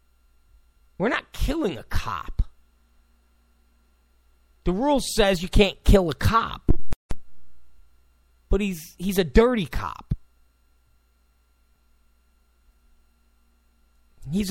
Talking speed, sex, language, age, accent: 85 wpm, male, English, 40-59, American